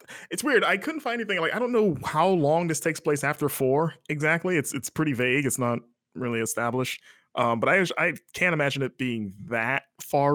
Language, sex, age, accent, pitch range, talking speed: English, male, 20-39, American, 105-150 Hz, 210 wpm